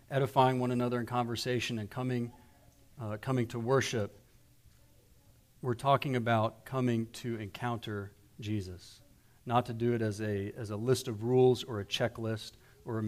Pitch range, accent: 110-130 Hz, American